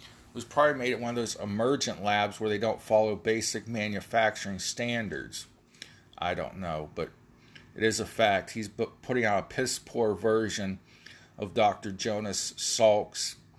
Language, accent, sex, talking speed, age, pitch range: English, American, male, 150 wpm, 40-59, 105-125 Hz